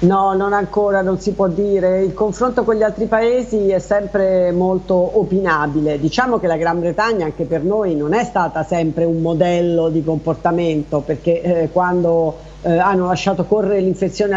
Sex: female